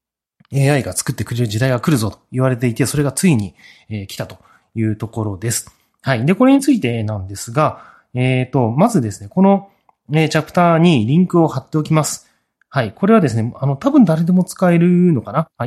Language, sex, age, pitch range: Japanese, male, 30-49, 110-165 Hz